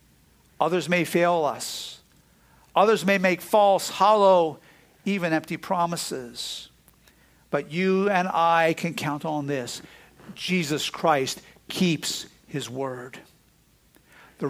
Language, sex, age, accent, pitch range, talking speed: English, male, 50-69, American, 160-200 Hz, 110 wpm